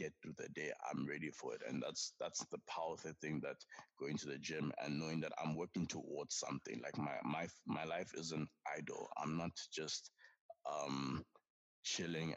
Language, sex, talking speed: English, male, 185 wpm